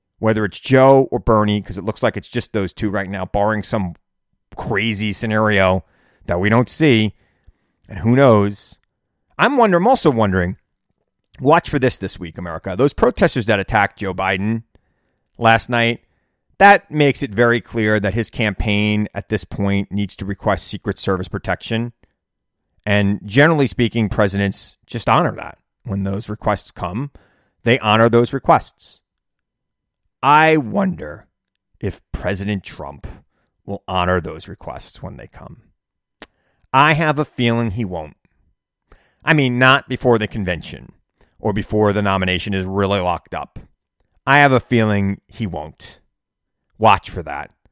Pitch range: 100-130 Hz